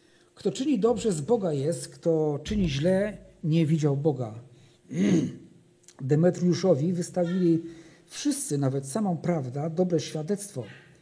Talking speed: 110 wpm